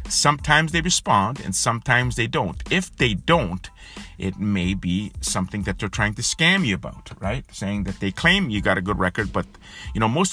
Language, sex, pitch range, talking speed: English, male, 90-115 Hz, 205 wpm